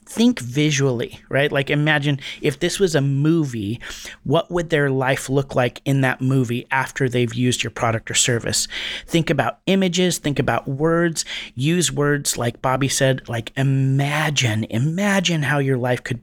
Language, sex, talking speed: English, male, 165 wpm